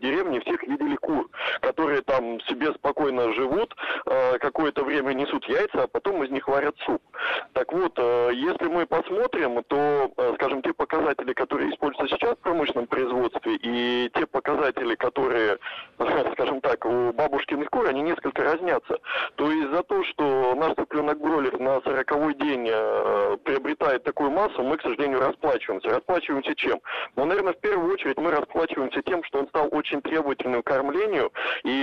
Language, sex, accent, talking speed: Russian, male, native, 155 wpm